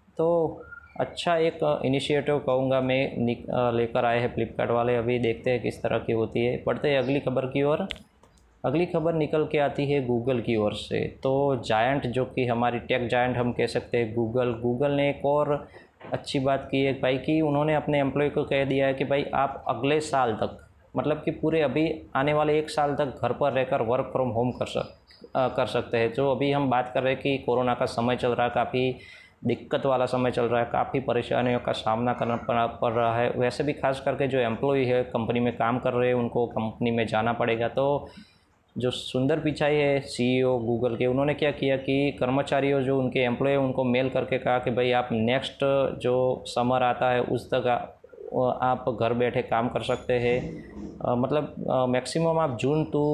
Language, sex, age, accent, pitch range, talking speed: Hindi, male, 20-39, native, 120-140 Hz, 205 wpm